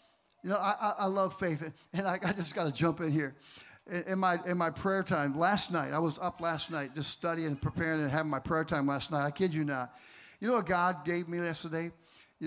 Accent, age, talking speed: American, 50-69, 255 wpm